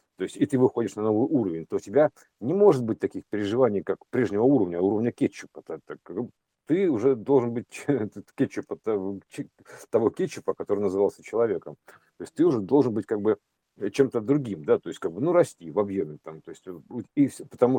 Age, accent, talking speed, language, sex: 50-69, native, 190 wpm, Russian, male